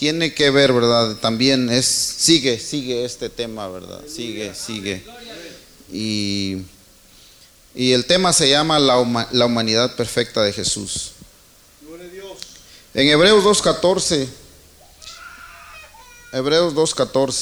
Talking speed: 95 wpm